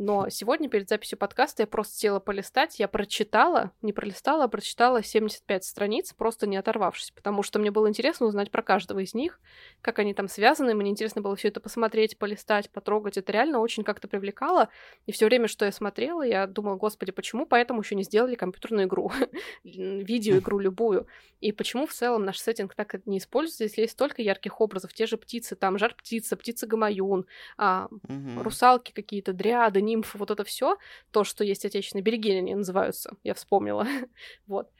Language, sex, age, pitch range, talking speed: Russian, female, 20-39, 200-230 Hz, 175 wpm